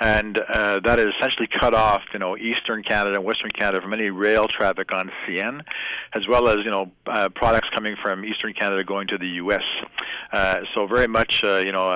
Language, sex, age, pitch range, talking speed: English, male, 50-69, 100-115 Hz, 210 wpm